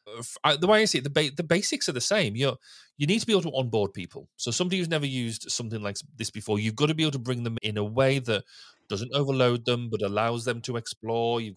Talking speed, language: 255 wpm, English